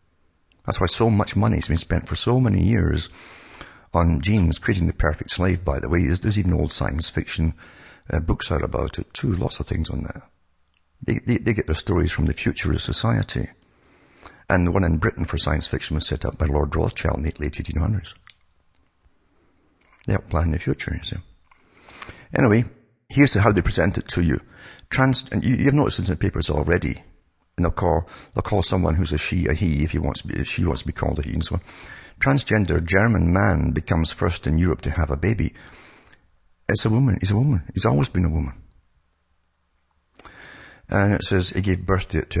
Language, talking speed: English, 205 wpm